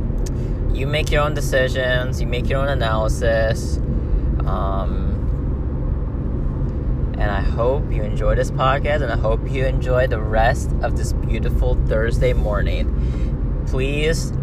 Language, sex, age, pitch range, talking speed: English, male, 20-39, 105-135 Hz, 130 wpm